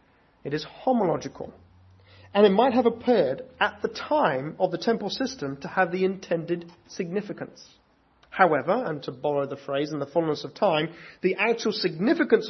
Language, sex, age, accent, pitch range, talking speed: English, male, 30-49, British, 160-210 Hz, 165 wpm